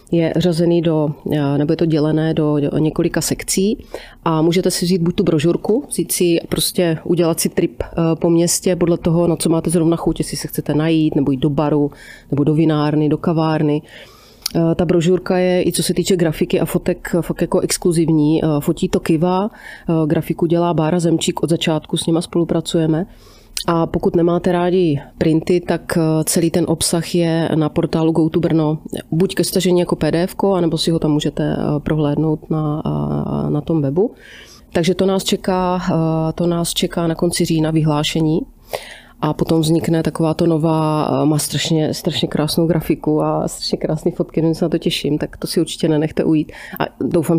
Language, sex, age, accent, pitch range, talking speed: Czech, female, 30-49, native, 155-175 Hz, 170 wpm